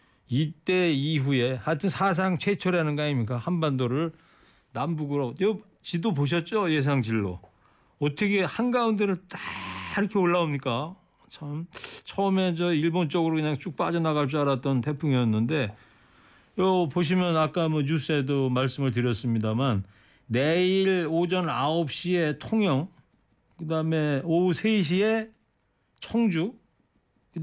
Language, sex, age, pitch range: Korean, male, 40-59, 130-180 Hz